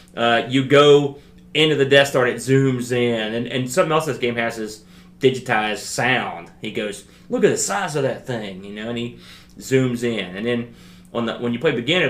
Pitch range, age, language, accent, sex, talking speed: 115-135 Hz, 30-49, English, American, male, 220 wpm